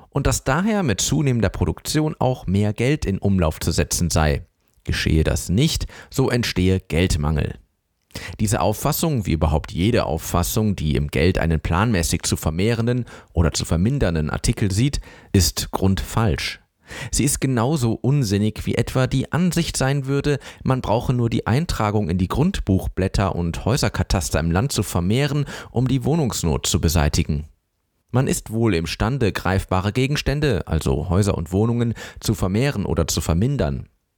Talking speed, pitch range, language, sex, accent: 145 wpm, 85-125 Hz, German, male, German